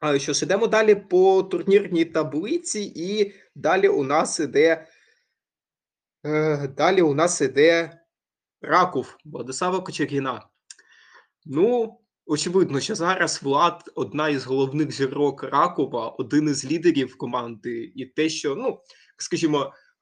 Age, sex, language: 20-39, male, Ukrainian